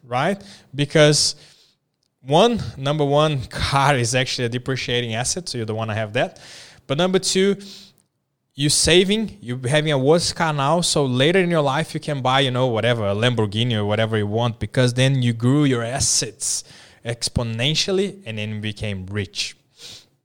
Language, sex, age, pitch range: English, male, 20-39, 115-150 Hz